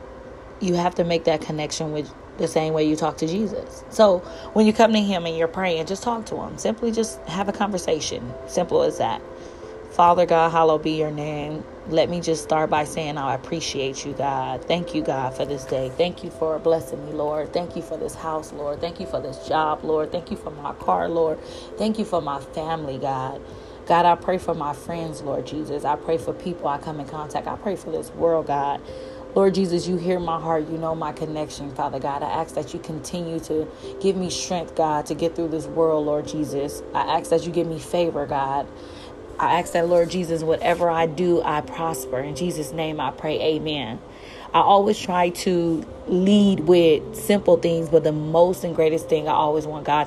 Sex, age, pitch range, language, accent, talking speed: female, 30-49, 150-175 Hz, English, American, 215 wpm